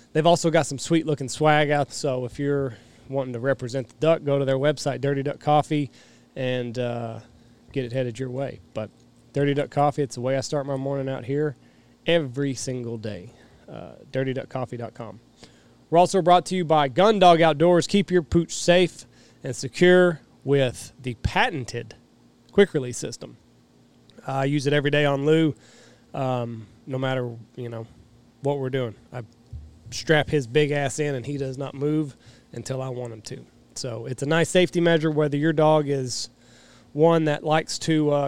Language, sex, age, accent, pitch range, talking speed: English, male, 30-49, American, 125-155 Hz, 175 wpm